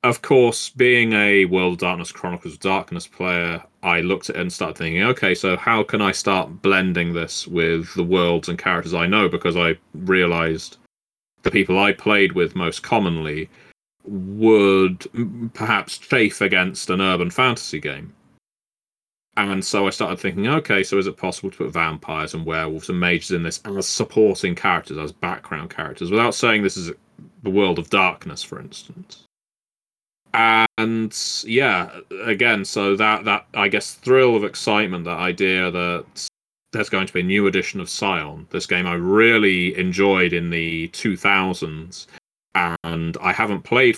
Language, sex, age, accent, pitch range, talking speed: English, male, 30-49, British, 85-105 Hz, 165 wpm